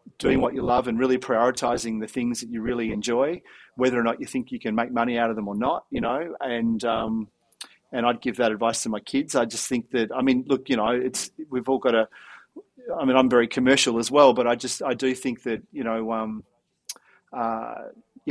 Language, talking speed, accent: English, 235 wpm, Australian